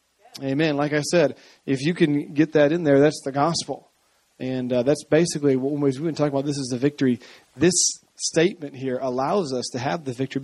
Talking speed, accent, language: 205 wpm, American, English